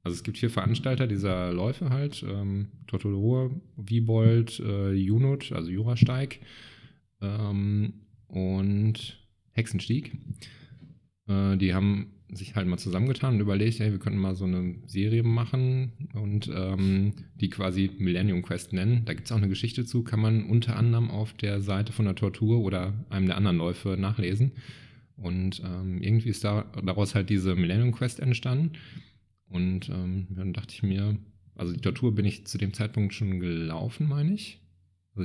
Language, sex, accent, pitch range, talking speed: German, male, German, 95-120 Hz, 160 wpm